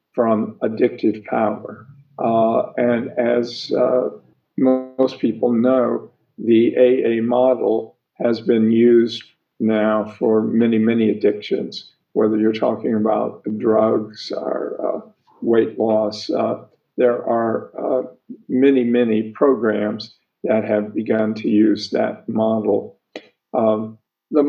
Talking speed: 115 wpm